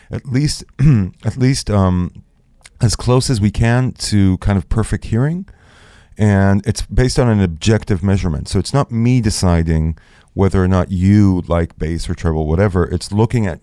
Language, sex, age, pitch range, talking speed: English, male, 30-49, 90-110 Hz, 170 wpm